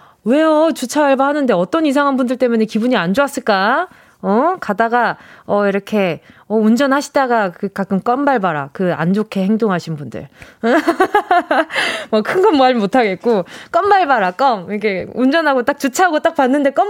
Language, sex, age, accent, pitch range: Korean, female, 20-39, native, 210-315 Hz